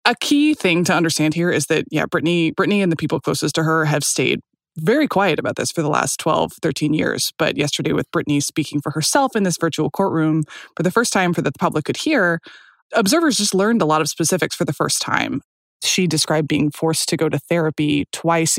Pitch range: 150-185 Hz